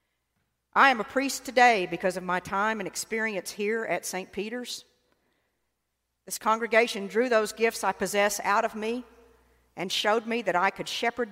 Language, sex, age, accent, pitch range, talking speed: English, female, 50-69, American, 160-230 Hz, 170 wpm